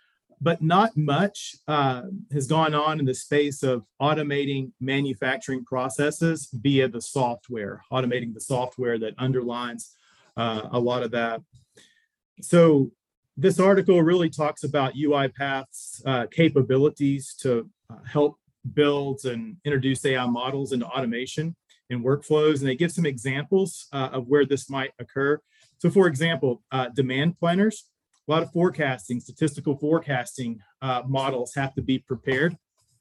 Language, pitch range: English, 125-150 Hz